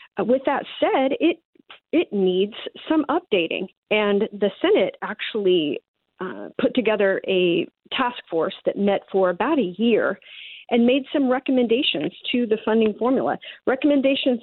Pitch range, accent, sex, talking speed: 190-250 Hz, American, female, 135 wpm